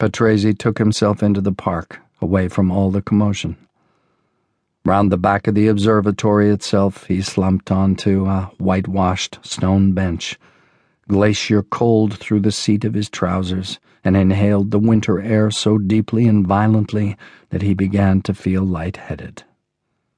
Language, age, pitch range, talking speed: English, 50-69, 95-115 Hz, 145 wpm